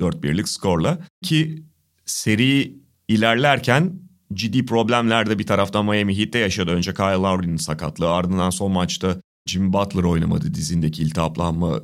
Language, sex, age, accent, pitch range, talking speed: Turkish, male, 30-49, native, 105-150 Hz, 125 wpm